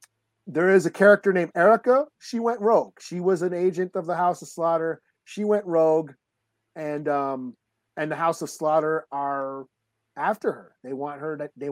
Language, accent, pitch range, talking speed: English, American, 145-190 Hz, 185 wpm